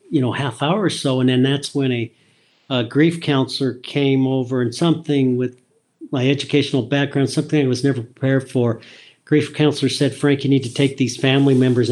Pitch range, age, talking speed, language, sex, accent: 120-140 Hz, 50-69, 195 wpm, English, male, American